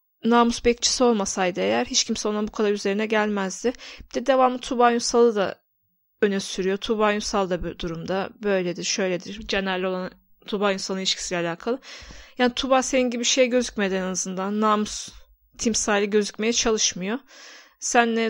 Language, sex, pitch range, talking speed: Turkish, female, 210-240 Hz, 150 wpm